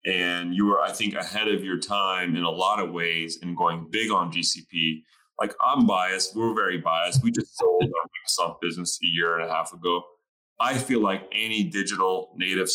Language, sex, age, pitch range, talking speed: English, male, 30-49, 90-125 Hz, 200 wpm